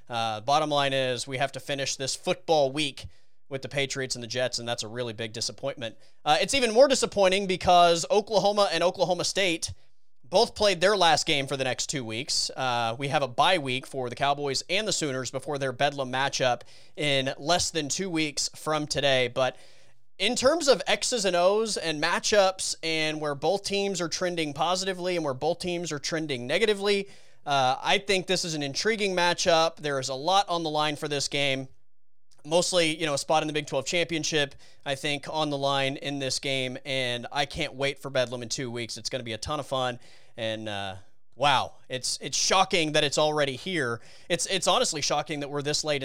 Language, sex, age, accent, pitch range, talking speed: English, male, 30-49, American, 130-175 Hz, 210 wpm